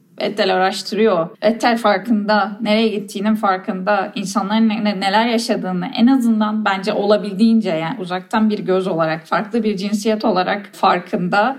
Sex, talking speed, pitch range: female, 130 wpm, 205-235 Hz